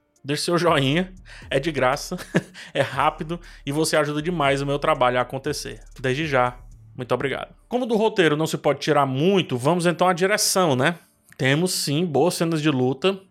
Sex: male